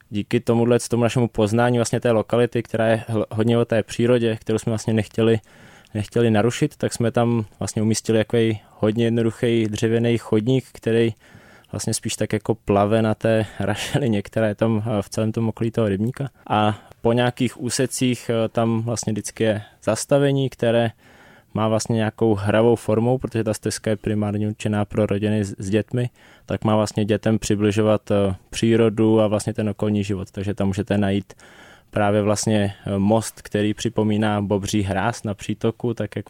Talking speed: 160 wpm